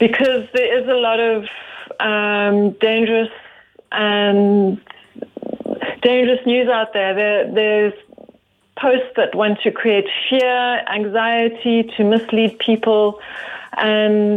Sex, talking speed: female, 110 wpm